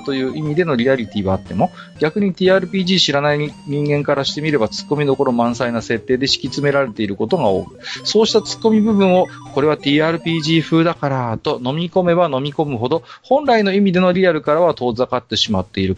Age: 40-59